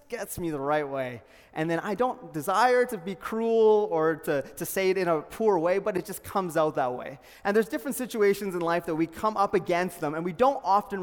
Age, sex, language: 20-39, male, English